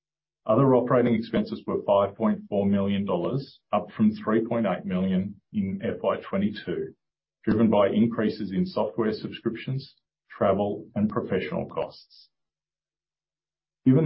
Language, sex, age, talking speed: English, male, 40-59, 100 wpm